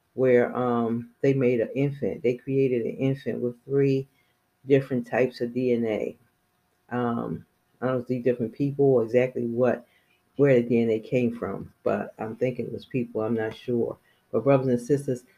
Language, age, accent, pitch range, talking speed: English, 40-59, American, 120-135 Hz, 170 wpm